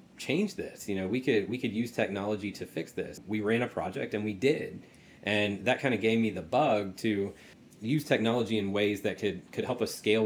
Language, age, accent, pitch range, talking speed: English, 30-49, American, 95-110 Hz, 230 wpm